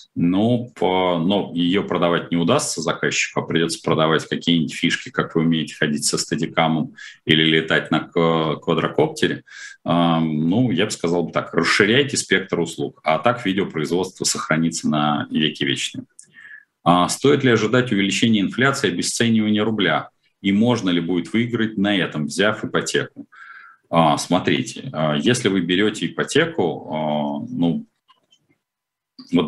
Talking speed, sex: 125 wpm, male